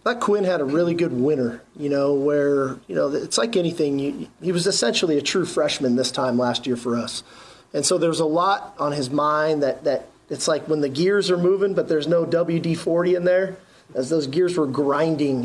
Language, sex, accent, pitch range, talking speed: English, male, American, 140-175 Hz, 220 wpm